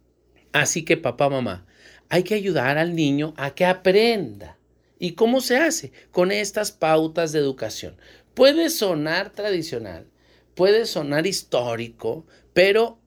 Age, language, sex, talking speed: 40-59, Spanish, male, 130 wpm